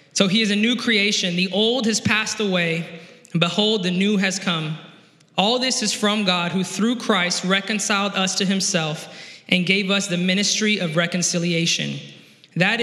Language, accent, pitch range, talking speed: English, American, 175-210 Hz, 170 wpm